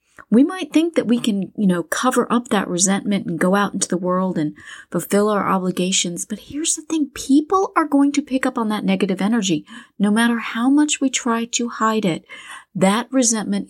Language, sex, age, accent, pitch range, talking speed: English, female, 30-49, American, 195-265 Hz, 205 wpm